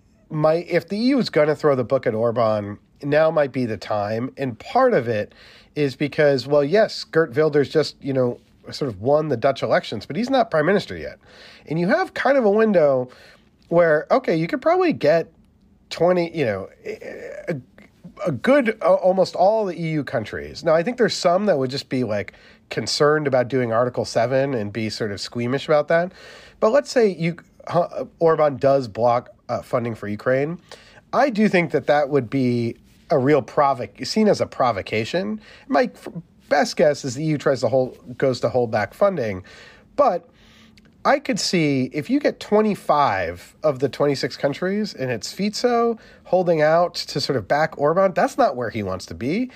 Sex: male